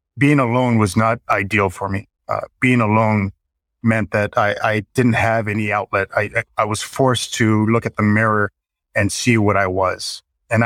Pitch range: 95-115 Hz